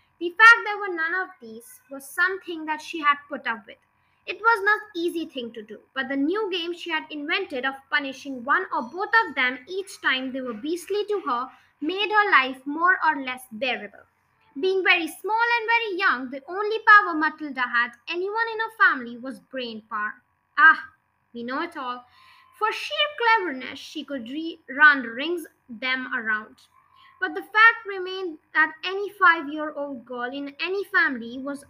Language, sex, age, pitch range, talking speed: English, female, 20-39, 265-370 Hz, 185 wpm